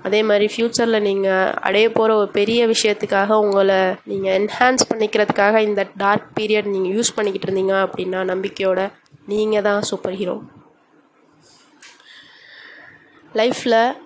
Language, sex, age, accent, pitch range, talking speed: Tamil, female, 20-39, native, 195-225 Hz, 115 wpm